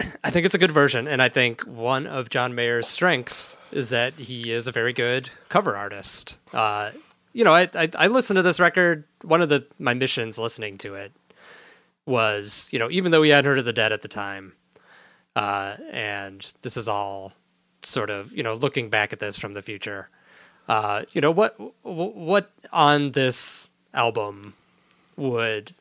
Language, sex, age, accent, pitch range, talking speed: English, male, 30-49, American, 105-145 Hz, 185 wpm